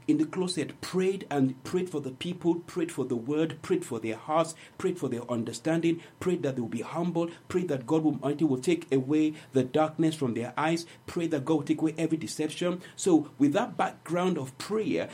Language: English